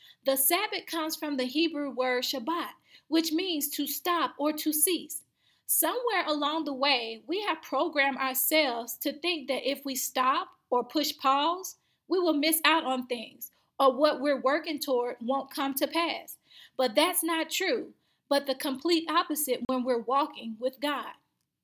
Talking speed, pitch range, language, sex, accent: 165 wpm, 255-320 Hz, English, female, American